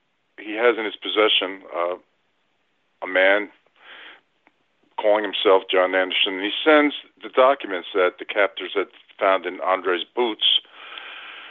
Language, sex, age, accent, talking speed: English, male, 50-69, American, 130 wpm